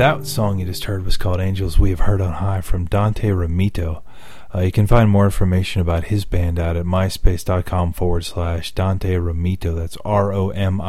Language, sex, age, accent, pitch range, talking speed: English, male, 30-49, American, 85-100 Hz, 205 wpm